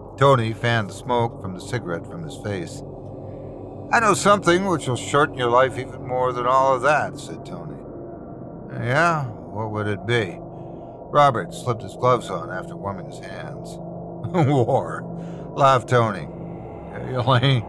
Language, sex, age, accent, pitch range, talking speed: English, male, 60-79, American, 110-150 Hz, 155 wpm